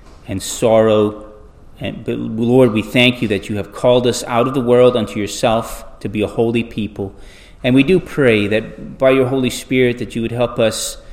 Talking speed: 205 wpm